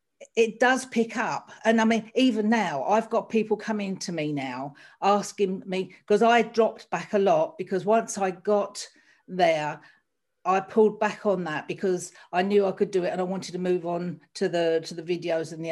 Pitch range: 180-220 Hz